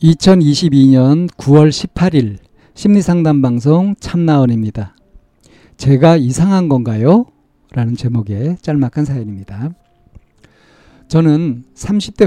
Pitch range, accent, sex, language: 125-170 Hz, native, male, Korean